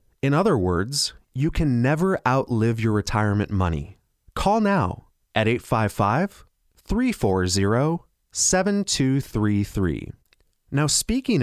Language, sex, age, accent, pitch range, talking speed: English, male, 30-49, American, 100-170 Hz, 85 wpm